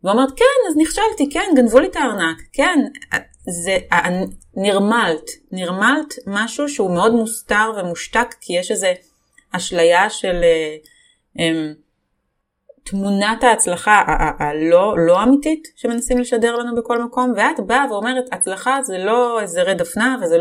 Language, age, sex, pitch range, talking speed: Hebrew, 30-49, female, 175-265 Hz, 140 wpm